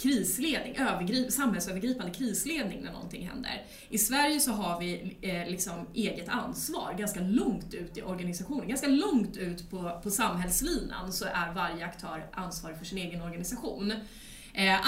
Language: English